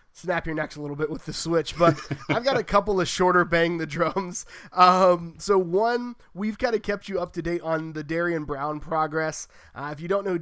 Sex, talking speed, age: male, 235 wpm, 20-39